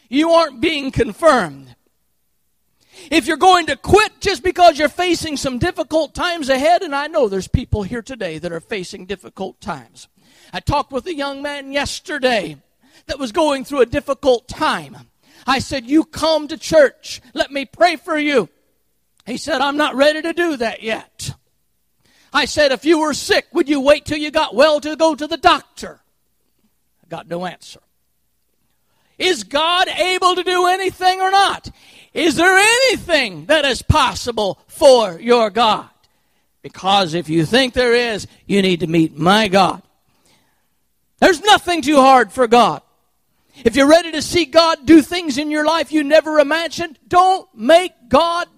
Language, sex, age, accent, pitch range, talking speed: English, male, 50-69, American, 240-340 Hz, 170 wpm